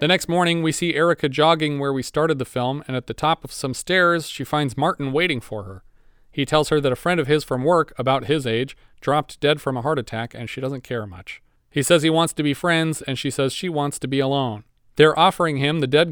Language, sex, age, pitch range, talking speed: English, male, 40-59, 130-160 Hz, 255 wpm